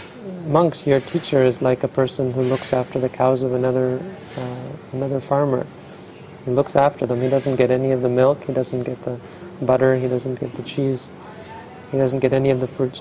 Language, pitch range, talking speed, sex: English, 125-140 Hz, 210 wpm, male